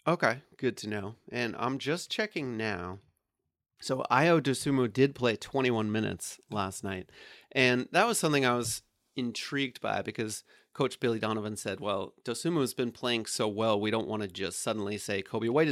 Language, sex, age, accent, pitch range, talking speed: English, male, 30-49, American, 105-130 Hz, 180 wpm